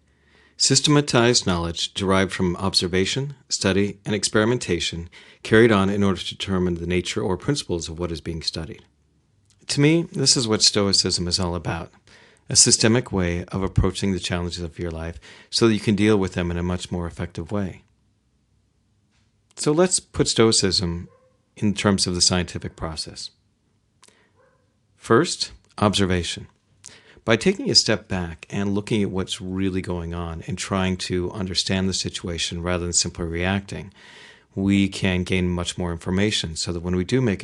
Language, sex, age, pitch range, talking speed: English, male, 40-59, 90-105 Hz, 160 wpm